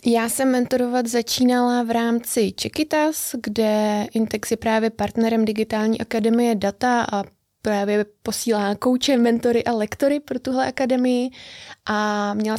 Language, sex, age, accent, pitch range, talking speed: Czech, female, 20-39, native, 220-240 Hz, 130 wpm